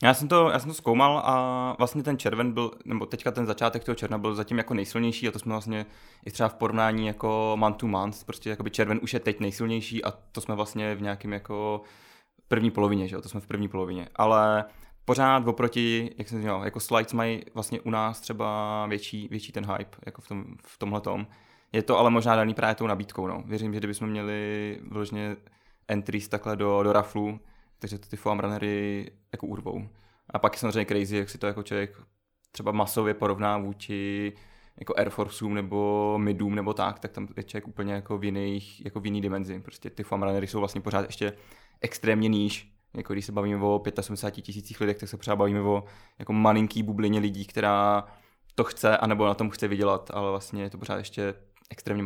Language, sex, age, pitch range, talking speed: Czech, male, 20-39, 100-110 Hz, 205 wpm